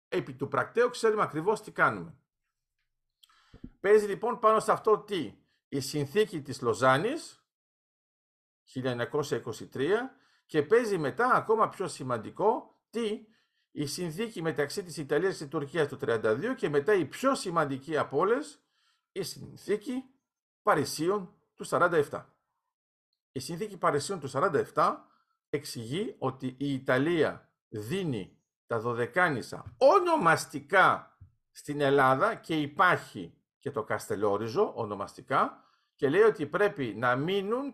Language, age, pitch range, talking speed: Greek, 50-69, 145-225 Hz, 120 wpm